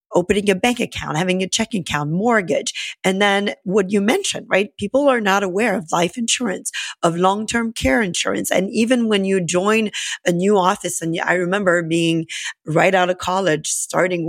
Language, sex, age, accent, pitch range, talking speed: English, female, 40-59, American, 165-205 Hz, 180 wpm